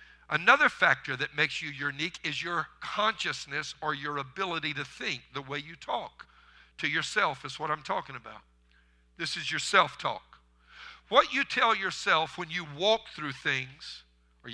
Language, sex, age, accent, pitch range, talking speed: English, male, 50-69, American, 120-175 Hz, 160 wpm